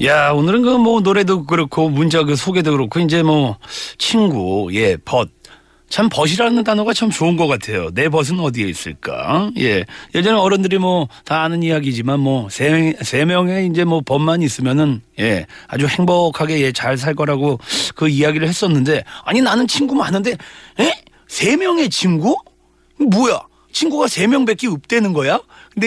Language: Korean